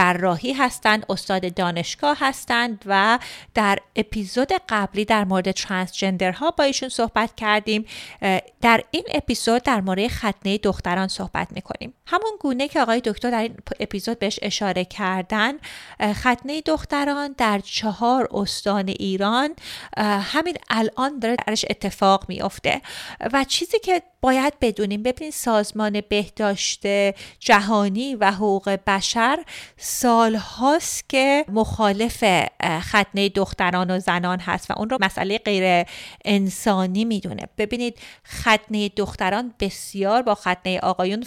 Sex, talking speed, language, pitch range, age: female, 125 wpm, Persian, 195-235 Hz, 30-49